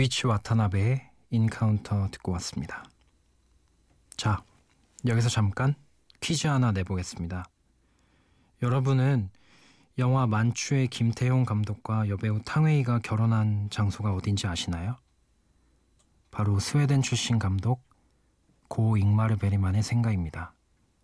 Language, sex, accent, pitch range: Korean, male, native, 100-120 Hz